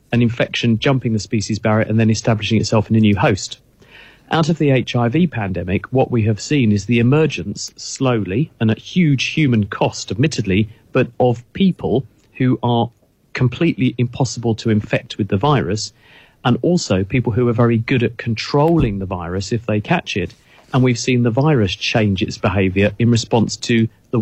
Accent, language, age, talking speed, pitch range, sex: British, English, 40-59, 180 wpm, 105-130 Hz, male